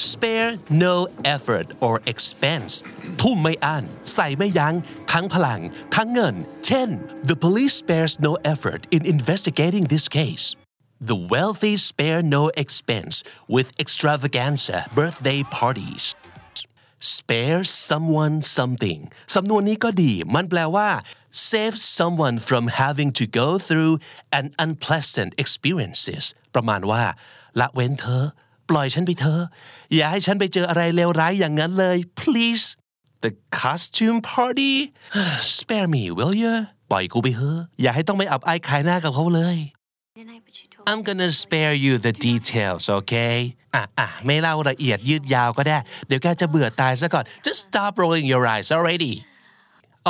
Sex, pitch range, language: male, 130-180 Hz, Thai